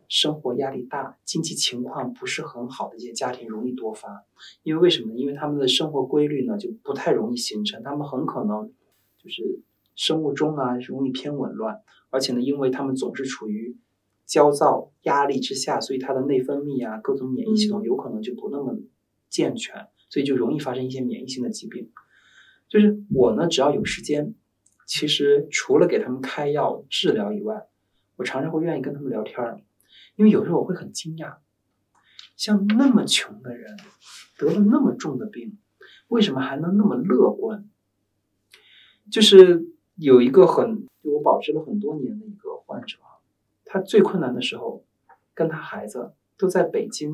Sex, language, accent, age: male, Chinese, native, 20-39